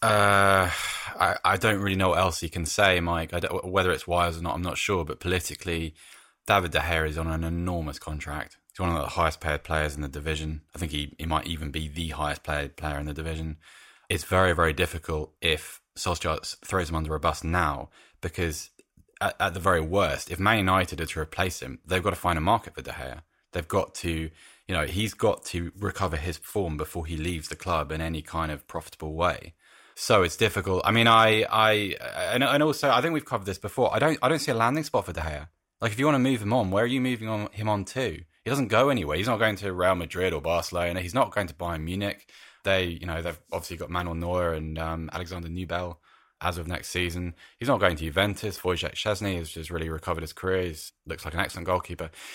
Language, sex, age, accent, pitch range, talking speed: English, male, 20-39, British, 80-100 Hz, 240 wpm